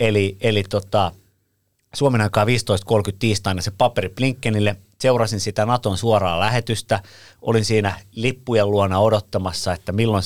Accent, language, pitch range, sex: native, Finnish, 95-115 Hz, male